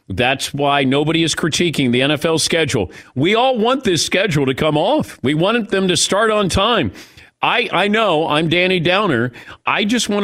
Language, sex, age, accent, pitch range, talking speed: English, male, 50-69, American, 120-180 Hz, 190 wpm